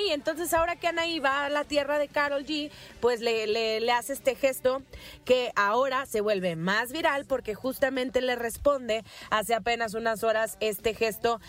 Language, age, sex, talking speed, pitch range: Spanish, 30-49, female, 180 wpm, 205-260 Hz